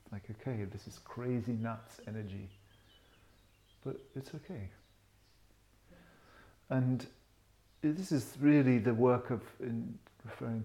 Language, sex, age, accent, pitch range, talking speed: English, male, 50-69, British, 105-125 Hz, 105 wpm